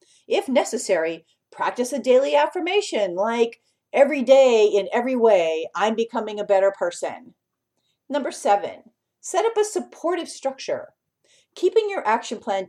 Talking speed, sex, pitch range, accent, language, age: 130 wpm, female, 205-280 Hz, American, English, 50-69